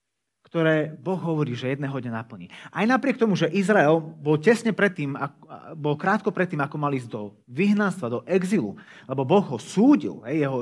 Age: 30-49